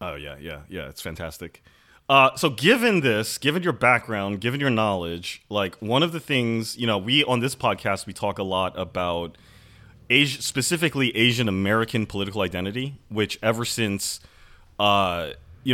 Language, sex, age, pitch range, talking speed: English, male, 30-49, 95-120 Hz, 165 wpm